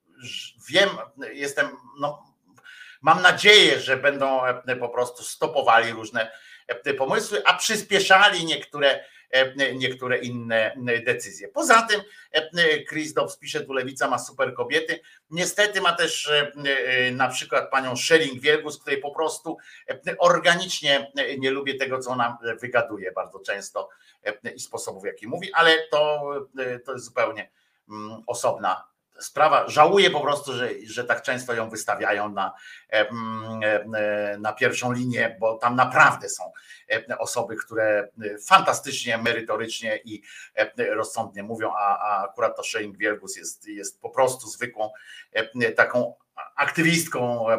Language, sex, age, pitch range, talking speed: Polish, male, 50-69, 120-185 Hz, 120 wpm